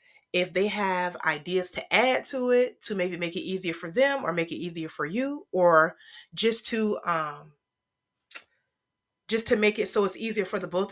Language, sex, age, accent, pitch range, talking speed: English, female, 30-49, American, 170-215 Hz, 190 wpm